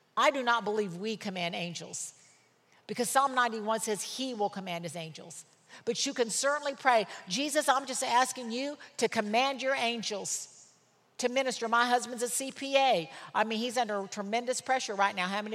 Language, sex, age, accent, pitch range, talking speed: English, female, 50-69, American, 215-275 Hz, 180 wpm